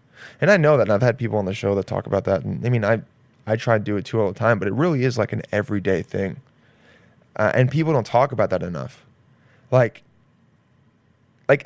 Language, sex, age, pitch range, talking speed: English, male, 20-39, 110-135 Hz, 230 wpm